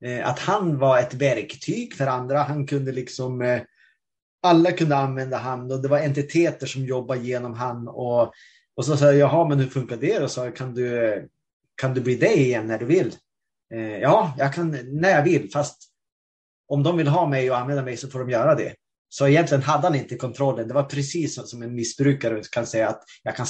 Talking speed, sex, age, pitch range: 210 wpm, male, 30-49, 125-155 Hz